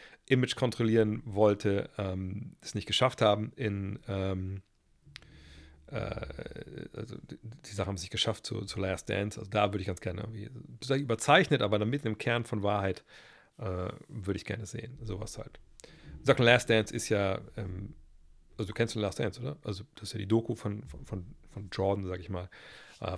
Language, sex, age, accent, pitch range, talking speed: German, male, 40-59, German, 100-120 Hz, 190 wpm